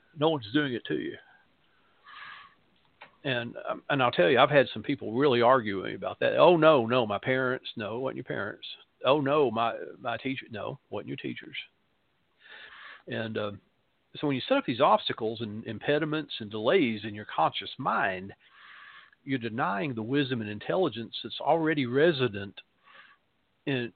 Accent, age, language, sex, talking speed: American, 50-69, English, male, 170 wpm